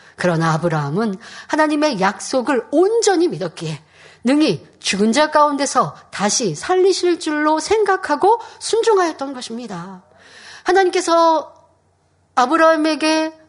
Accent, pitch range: native, 205-335 Hz